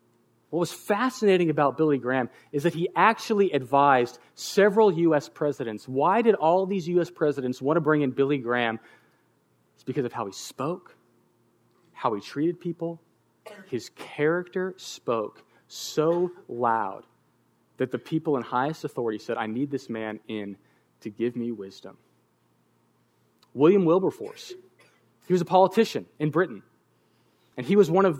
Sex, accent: male, American